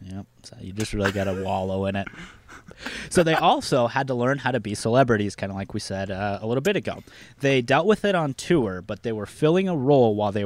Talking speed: 250 wpm